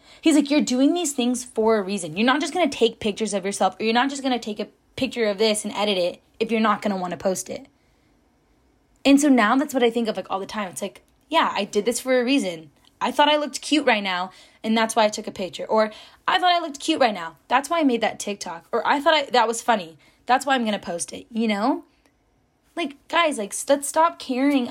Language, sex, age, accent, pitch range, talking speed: English, female, 20-39, American, 210-280 Hz, 275 wpm